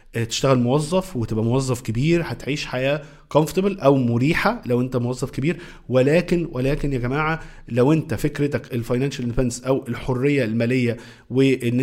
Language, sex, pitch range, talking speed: Arabic, male, 125-150 Hz, 135 wpm